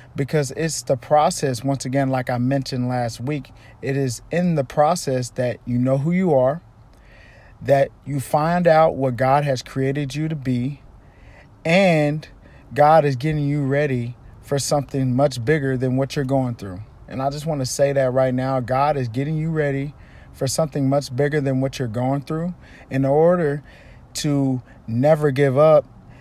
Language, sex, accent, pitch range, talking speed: English, male, American, 125-150 Hz, 175 wpm